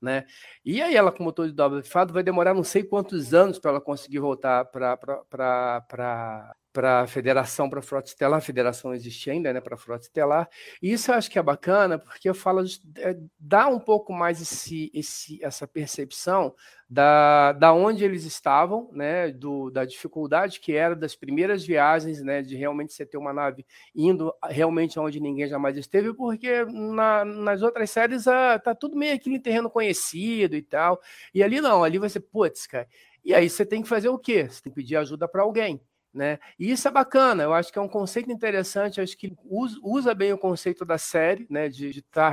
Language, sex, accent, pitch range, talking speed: Portuguese, male, Brazilian, 145-205 Hz, 205 wpm